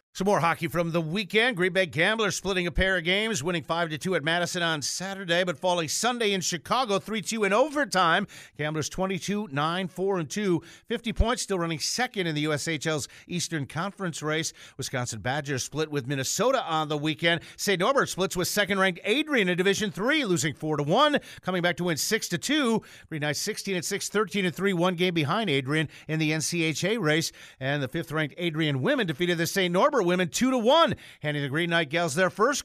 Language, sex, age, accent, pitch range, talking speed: English, male, 50-69, American, 155-200 Hz, 180 wpm